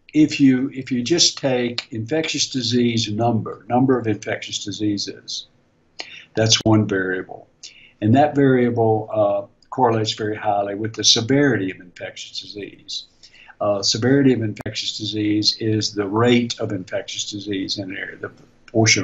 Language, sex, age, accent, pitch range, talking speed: English, male, 60-79, American, 105-120 Hz, 140 wpm